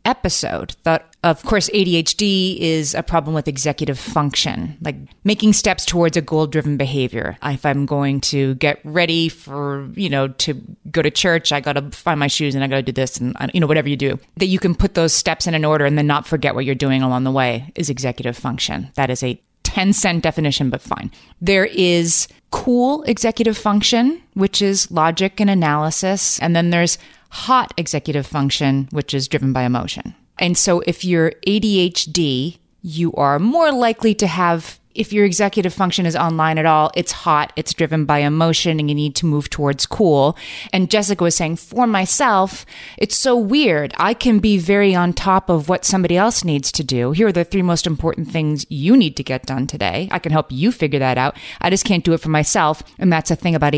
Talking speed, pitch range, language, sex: 210 wpm, 145-185 Hz, English, female